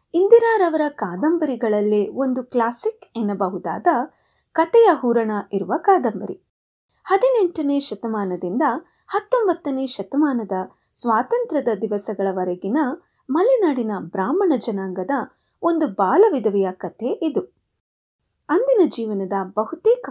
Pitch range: 215-340 Hz